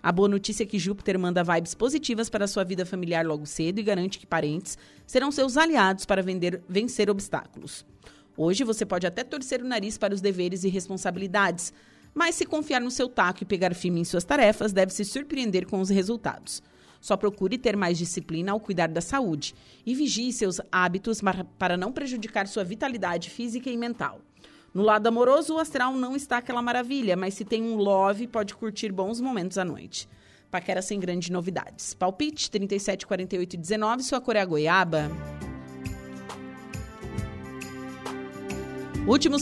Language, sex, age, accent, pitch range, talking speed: Portuguese, female, 30-49, Brazilian, 180-240 Hz, 170 wpm